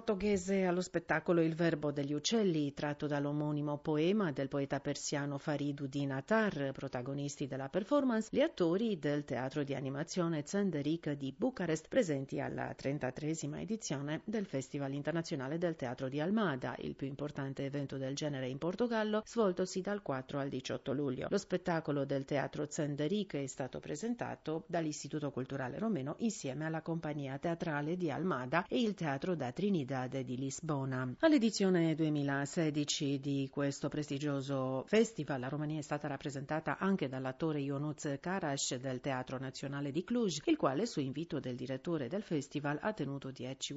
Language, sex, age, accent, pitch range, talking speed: Italian, female, 40-59, native, 140-180 Hz, 150 wpm